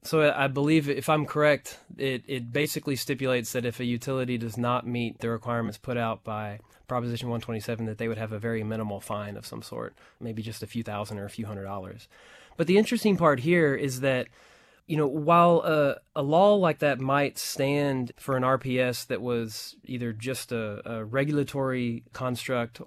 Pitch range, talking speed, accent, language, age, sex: 115-140 Hz, 190 wpm, American, English, 20-39, male